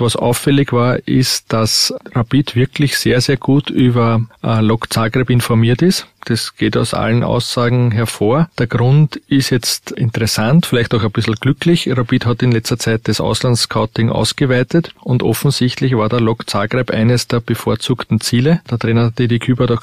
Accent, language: Austrian, German